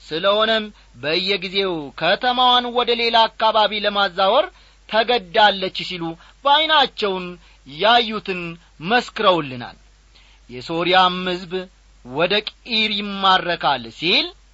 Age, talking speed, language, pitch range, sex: 40-59, 80 wpm, Amharic, 155-220 Hz, male